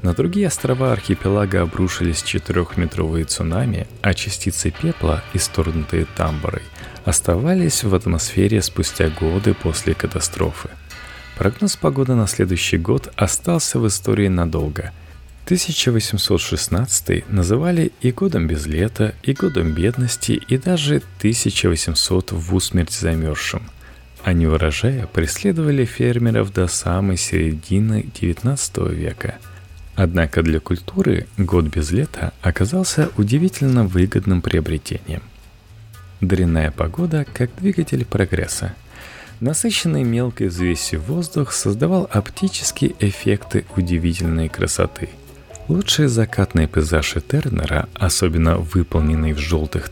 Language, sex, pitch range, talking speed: Russian, male, 85-115 Hz, 100 wpm